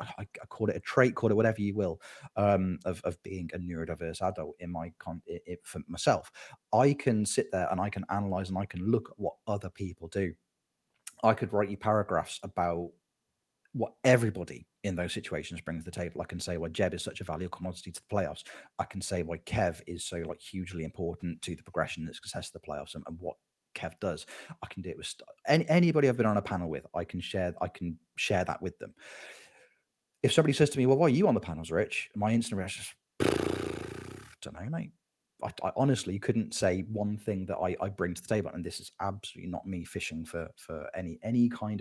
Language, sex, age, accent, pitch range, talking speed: English, male, 30-49, British, 85-110 Hz, 235 wpm